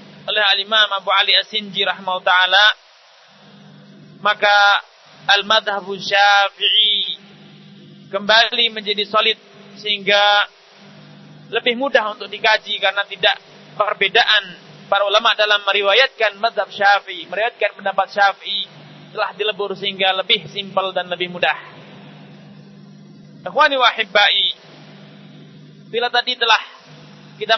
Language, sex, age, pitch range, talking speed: Malay, male, 30-49, 190-210 Hz, 95 wpm